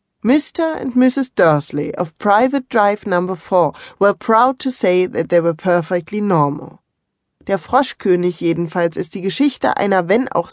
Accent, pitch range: German, 170-235 Hz